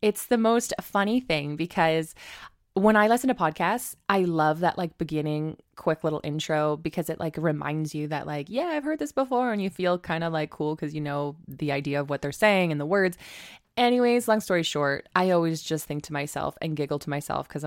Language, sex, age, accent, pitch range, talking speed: English, female, 20-39, American, 150-190 Hz, 220 wpm